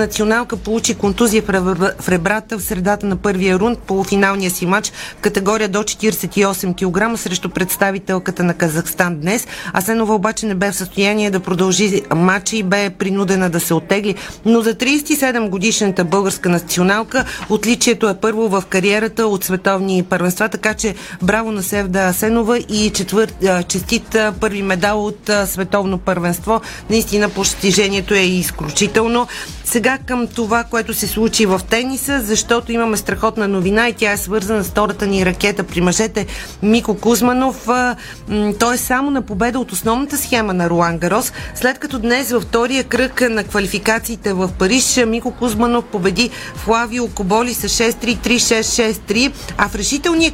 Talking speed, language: 150 wpm, Bulgarian